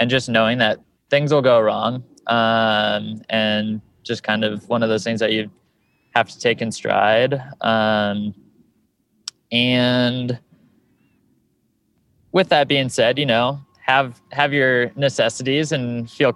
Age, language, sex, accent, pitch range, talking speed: 20-39, English, male, American, 110-125 Hz, 140 wpm